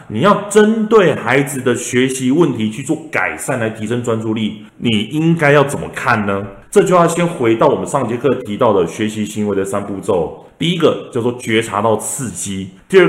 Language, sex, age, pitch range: Chinese, male, 30-49, 110-170 Hz